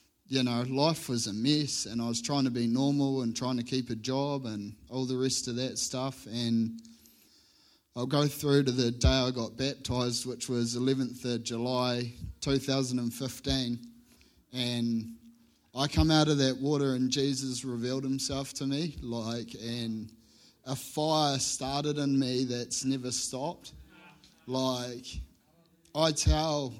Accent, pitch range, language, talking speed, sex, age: Australian, 120-135 Hz, English, 160 wpm, male, 30-49